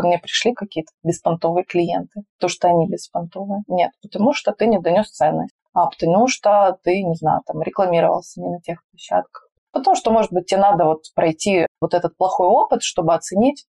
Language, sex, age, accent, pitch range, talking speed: Russian, female, 20-39, native, 170-205 Hz, 185 wpm